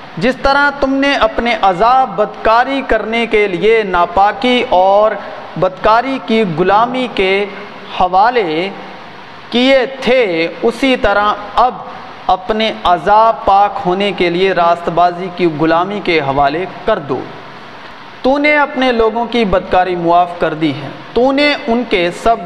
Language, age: Urdu, 40-59